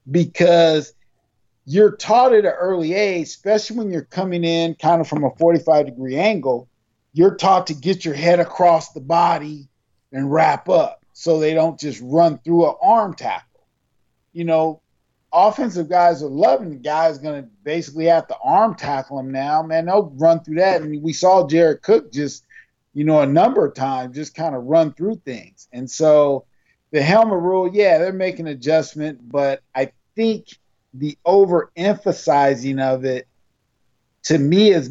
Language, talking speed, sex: English, 165 wpm, male